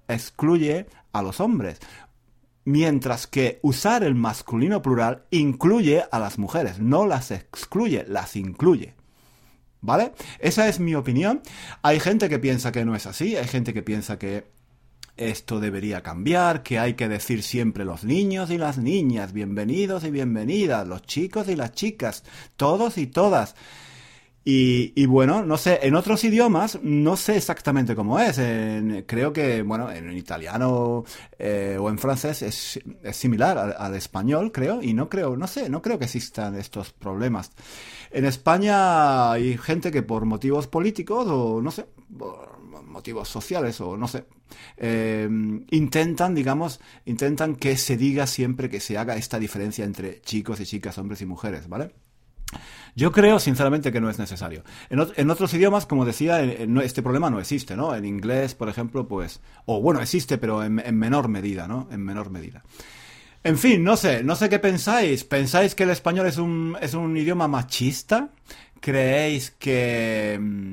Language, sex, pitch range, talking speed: Spanish, male, 110-155 Hz, 165 wpm